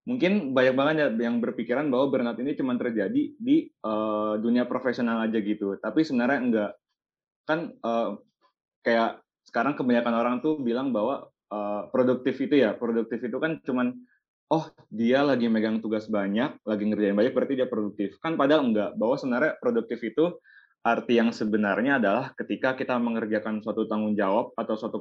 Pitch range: 110-135 Hz